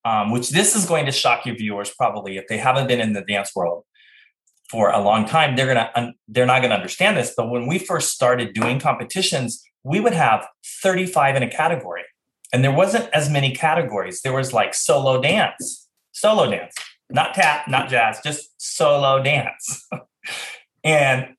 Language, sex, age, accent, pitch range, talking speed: English, male, 30-49, American, 115-150 Hz, 185 wpm